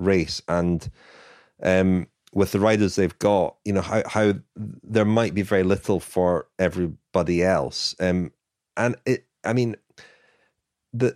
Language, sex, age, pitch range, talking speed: English, male, 30-49, 85-105 Hz, 140 wpm